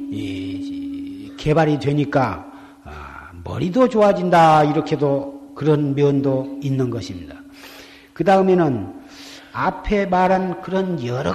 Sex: male